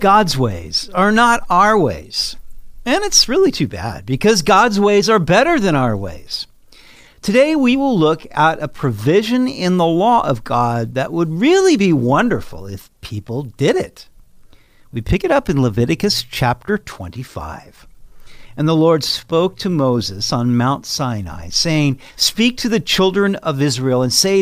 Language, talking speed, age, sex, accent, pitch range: English, 160 wpm, 50-69, male, American, 125-185 Hz